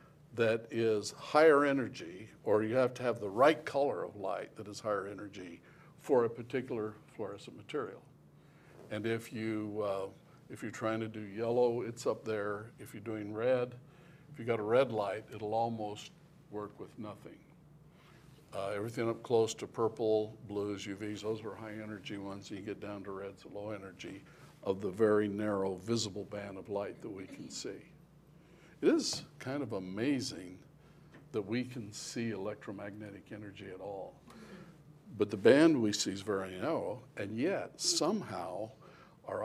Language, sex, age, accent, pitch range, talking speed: English, male, 60-79, American, 105-135 Hz, 165 wpm